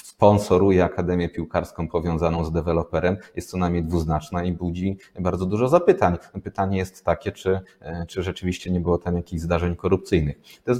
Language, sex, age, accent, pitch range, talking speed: Polish, male, 30-49, native, 85-105 Hz, 160 wpm